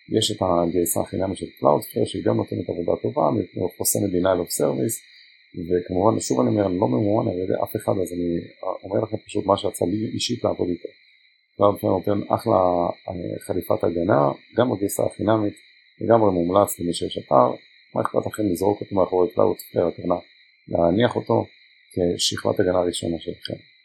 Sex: male